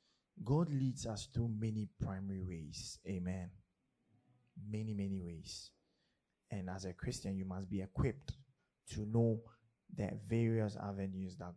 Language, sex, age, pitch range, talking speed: English, male, 20-39, 95-115 Hz, 130 wpm